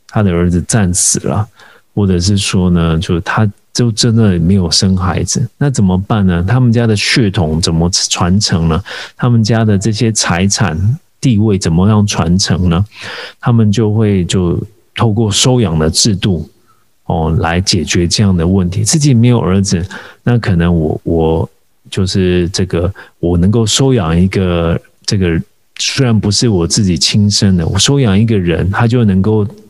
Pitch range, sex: 90-110 Hz, male